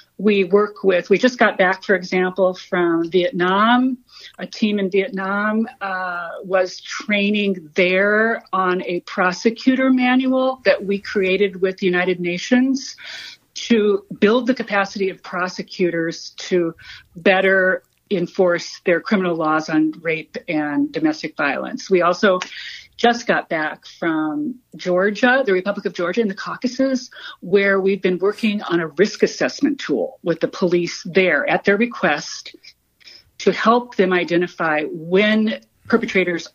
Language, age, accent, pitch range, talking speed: English, 40-59, American, 175-215 Hz, 135 wpm